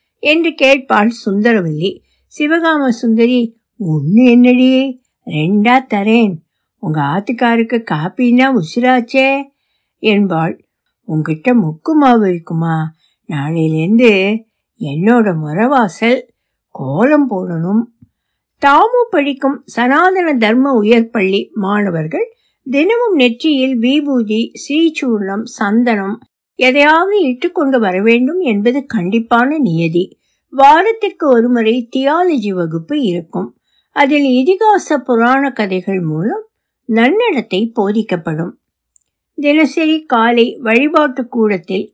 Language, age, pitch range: Tamil, 60-79, 205-280 Hz